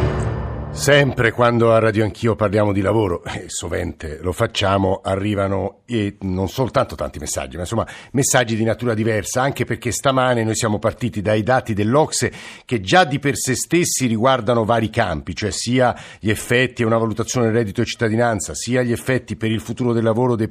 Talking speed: 180 wpm